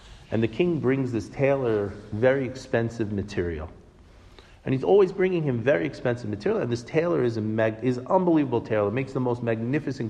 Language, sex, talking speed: English, male, 180 wpm